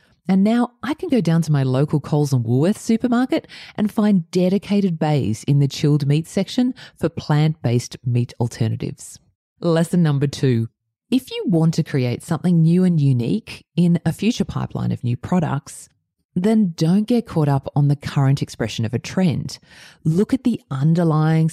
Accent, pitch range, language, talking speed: Australian, 130-185 Hz, English, 170 wpm